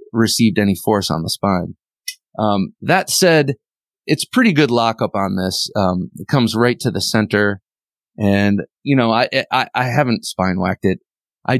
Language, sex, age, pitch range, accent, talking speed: English, male, 30-49, 105-130 Hz, American, 175 wpm